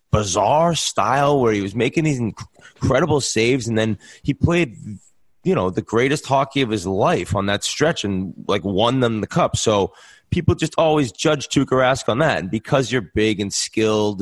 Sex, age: male, 30-49